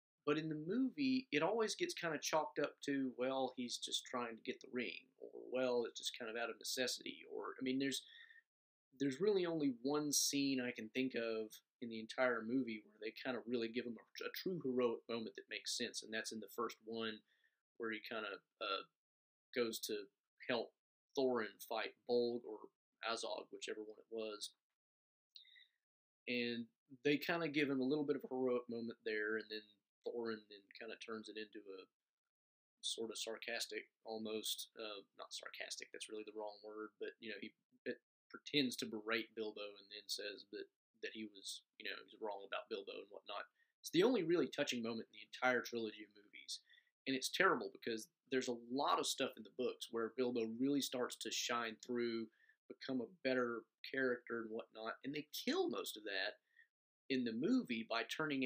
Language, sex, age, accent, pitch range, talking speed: English, male, 30-49, American, 115-150 Hz, 195 wpm